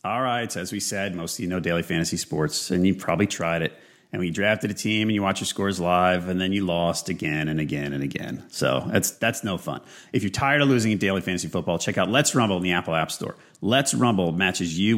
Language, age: English, 30-49